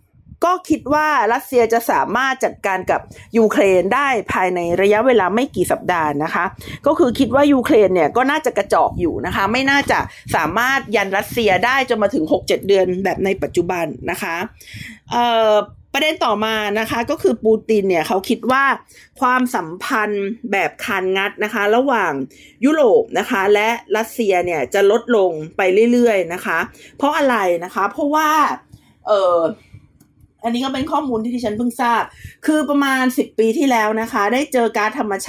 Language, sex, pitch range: Thai, female, 200-255 Hz